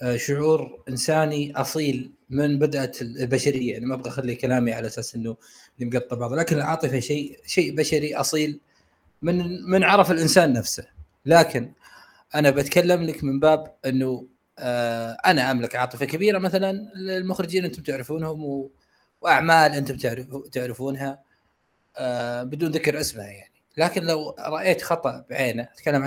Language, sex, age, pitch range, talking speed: Arabic, male, 20-39, 125-175 Hz, 125 wpm